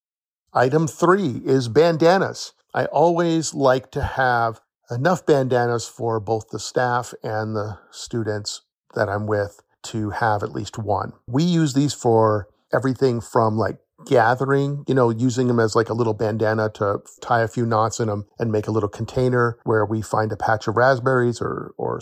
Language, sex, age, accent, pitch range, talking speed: English, male, 50-69, American, 110-130 Hz, 175 wpm